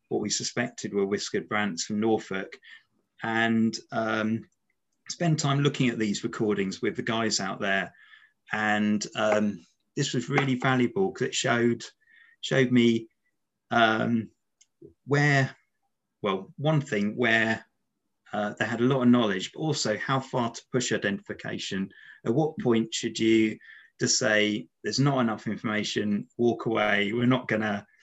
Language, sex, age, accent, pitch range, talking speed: English, male, 30-49, British, 105-135 Hz, 145 wpm